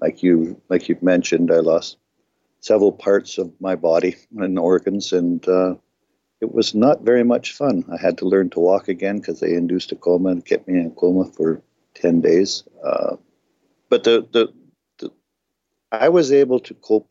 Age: 50-69